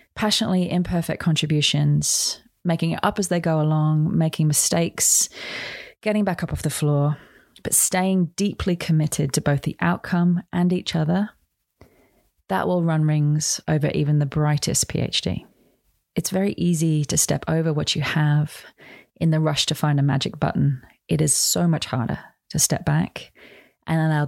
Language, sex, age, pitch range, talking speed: English, female, 30-49, 155-195 Hz, 160 wpm